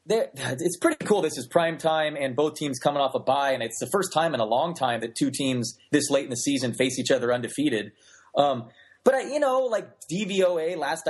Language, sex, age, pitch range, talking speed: English, male, 30-49, 130-180 Hz, 240 wpm